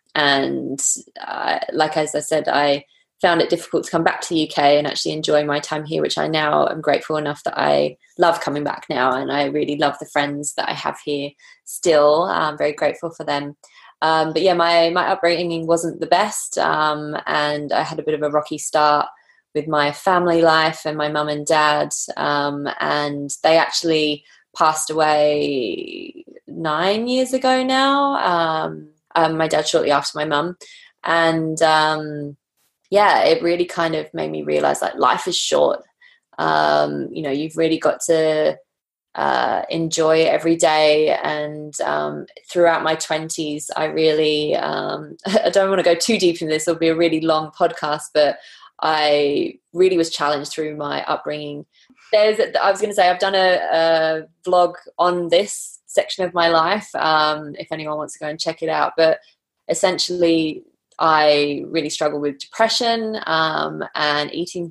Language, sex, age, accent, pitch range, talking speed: English, female, 20-39, British, 150-170 Hz, 175 wpm